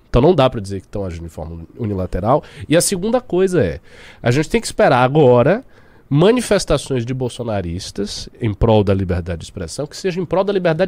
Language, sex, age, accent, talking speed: Portuguese, male, 20-39, Brazilian, 205 wpm